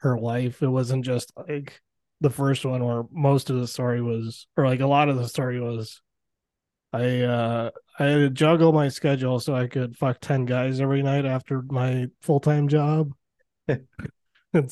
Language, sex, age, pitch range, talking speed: English, male, 20-39, 115-140 Hz, 185 wpm